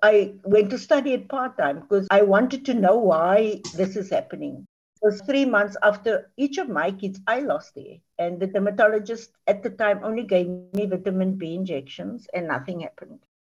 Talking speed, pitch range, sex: 190 wpm, 190-245 Hz, female